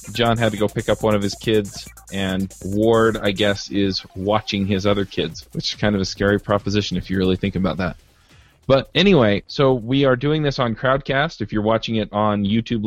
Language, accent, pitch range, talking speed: English, American, 105-125 Hz, 220 wpm